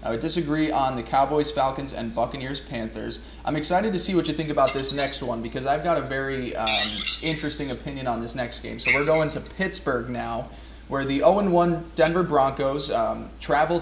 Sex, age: male, 20-39